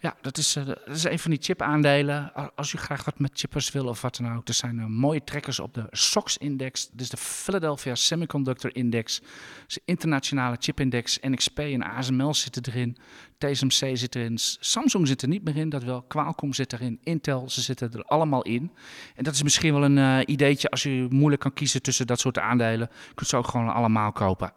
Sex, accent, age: male, Dutch, 40-59